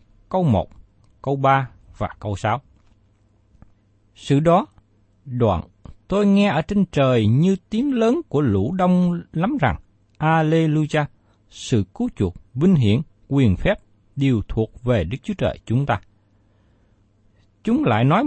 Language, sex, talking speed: Vietnamese, male, 140 wpm